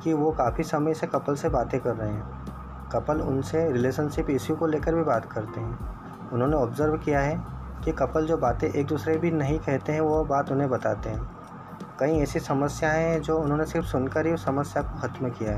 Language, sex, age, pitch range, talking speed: Hindi, male, 20-39, 125-155 Hz, 210 wpm